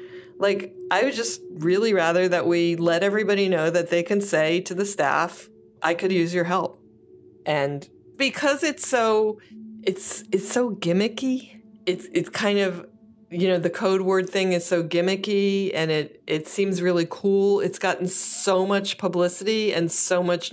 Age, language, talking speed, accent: 40-59, English, 170 wpm, American